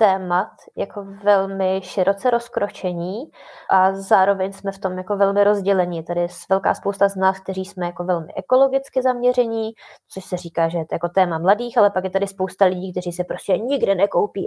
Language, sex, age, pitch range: Czech, female, 20-39, 190-215 Hz